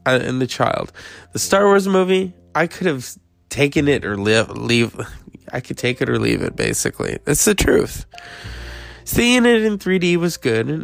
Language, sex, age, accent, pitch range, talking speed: English, male, 20-39, American, 105-170 Hz, 200 wpm